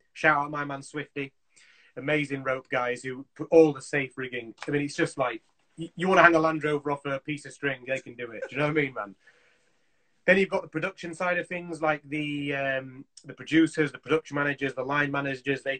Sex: male